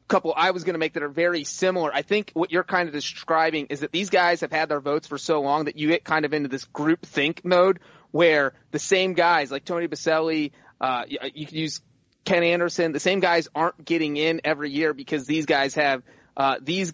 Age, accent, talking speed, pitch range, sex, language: 30-49, American, 230 wpm, 150-175 Hz, male, English